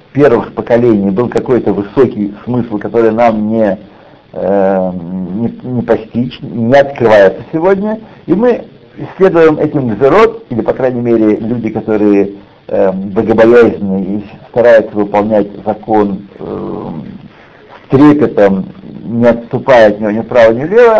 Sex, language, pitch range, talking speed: male, Russian, 115-165 Hz, 125 wpm